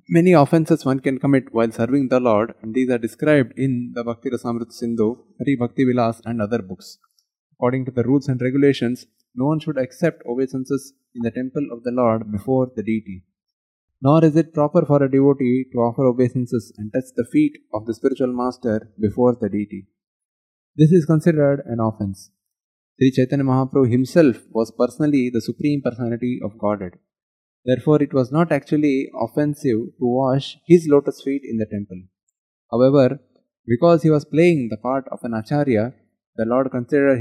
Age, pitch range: 20-39, 115-140 Hz